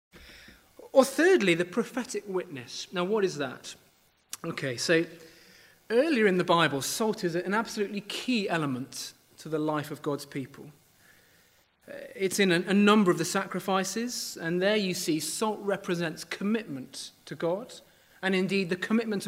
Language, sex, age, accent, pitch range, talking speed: English, male, 30-49, British, 155-200 Hz, 150 wpm